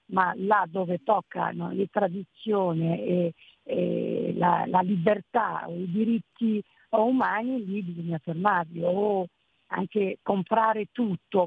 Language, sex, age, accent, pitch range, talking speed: Italian, female, 50-69, native, 175-215 Hz, 120 wpm